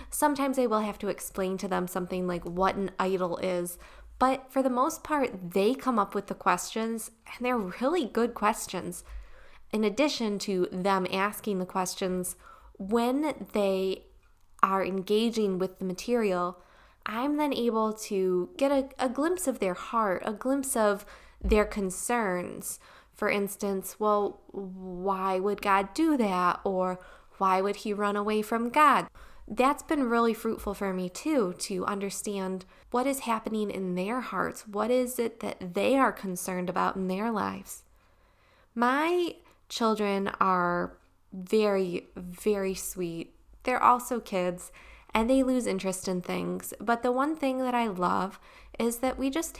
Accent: American